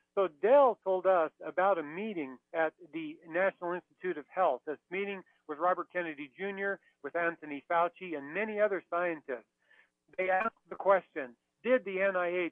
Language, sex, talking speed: English, male, 160 wpm